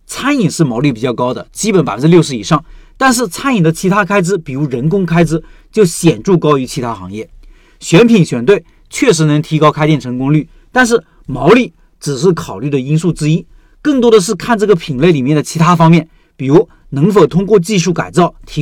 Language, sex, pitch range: Chinese, male, 150-200 Hz